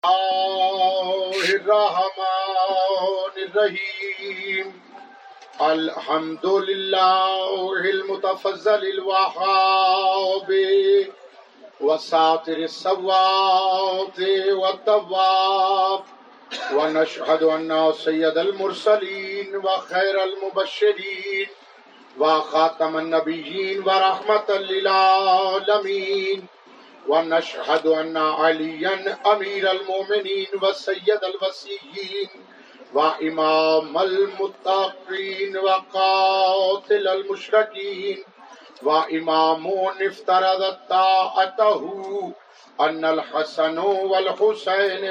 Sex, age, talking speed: male, 50-69, 45 wpm